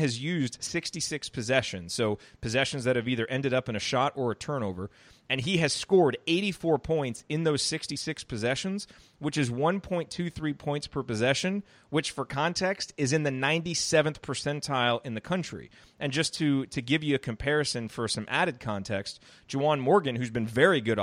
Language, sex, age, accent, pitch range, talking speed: English, male, 30-49, American, 120-155 Hz, 175 wpm